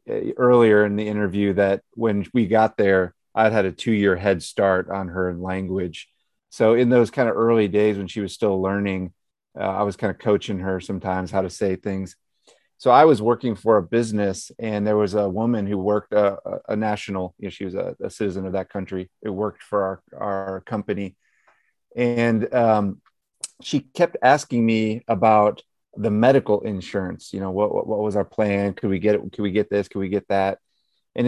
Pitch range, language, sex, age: 100-115 Hz, English, male, 30-49